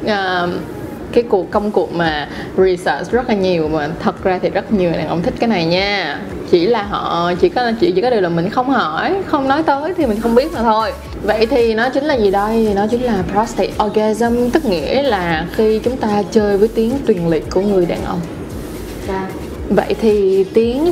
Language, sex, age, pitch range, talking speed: Vietnamese, female, 20-39, 190-245 Hz, 215 wpm